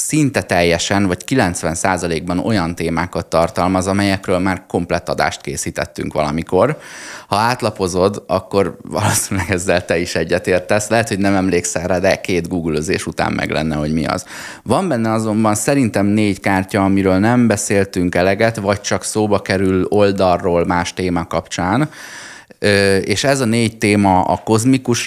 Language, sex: Hungarian, male